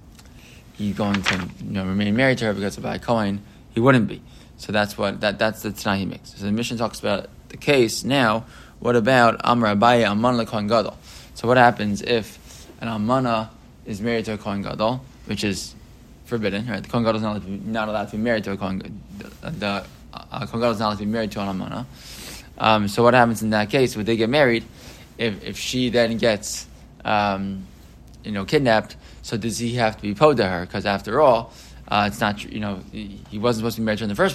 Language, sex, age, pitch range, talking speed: English, male, 20-39, 105-120 Hz, 220 wpm